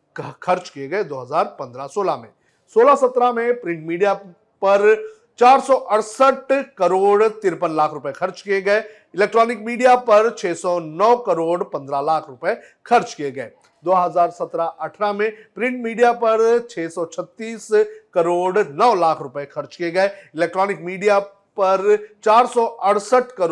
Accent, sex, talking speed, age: native, male, 120 wpm, 40-59